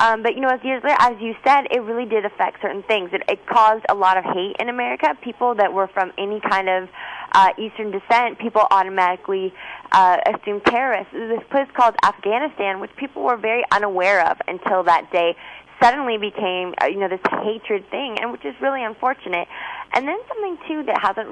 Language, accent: English, American